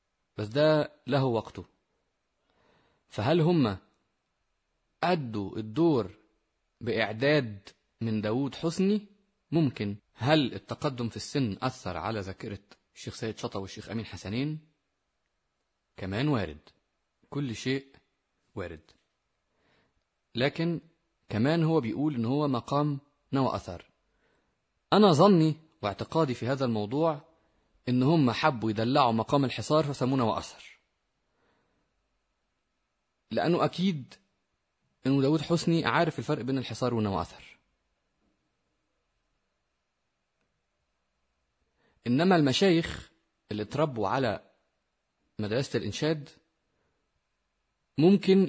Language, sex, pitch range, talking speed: Arabic, male, 110-155 Hz, 90 wpm